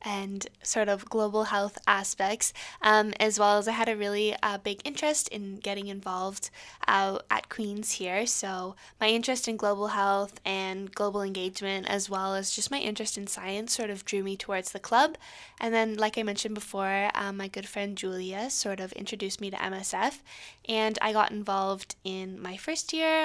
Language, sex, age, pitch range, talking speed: English, female, 10-29, 195-225 Hz, 190 wpm